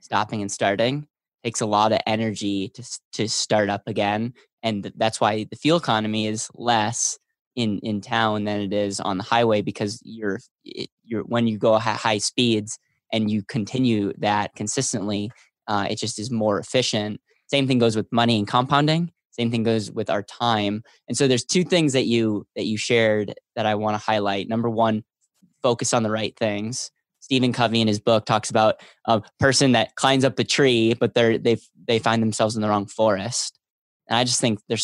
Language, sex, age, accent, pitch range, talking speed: English, male, 20-39, American, 105-120 Hz, 200 wpm